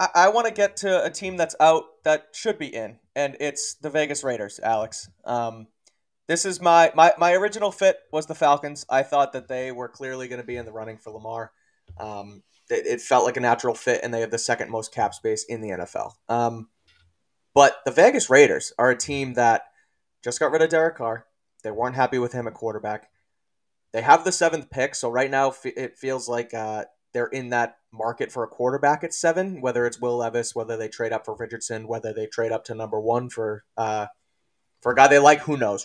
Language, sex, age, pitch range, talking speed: English, male, 20-39, 115-150 Hz, 220 wpm